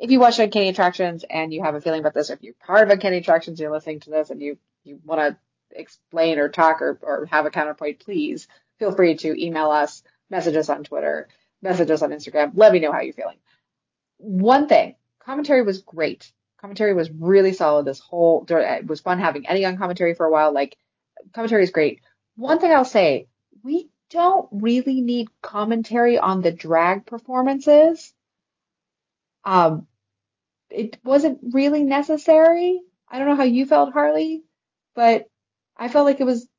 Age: 30-49